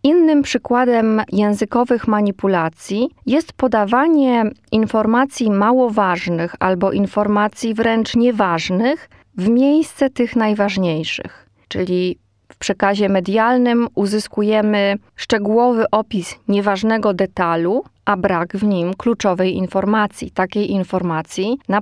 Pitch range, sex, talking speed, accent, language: 190-235 Hz, female, 95 wpm, native, Polish